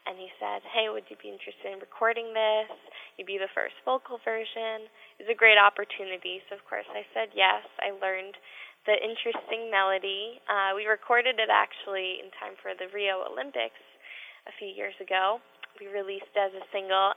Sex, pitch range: female, 190-220 Hz